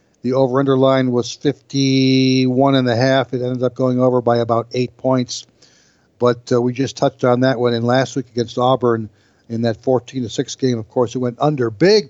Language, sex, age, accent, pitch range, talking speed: English, male, 60-79, American, 125-145 Hz, 200 wpm